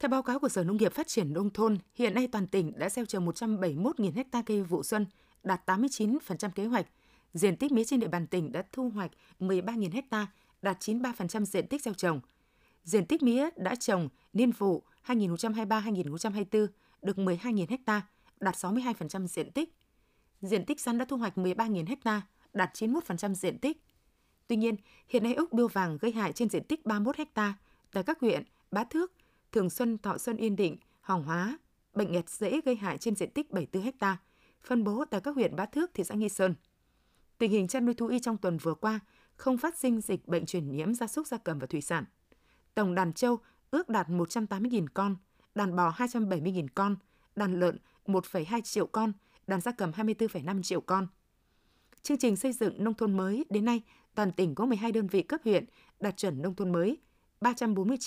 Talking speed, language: 195 wpm, Vietnamese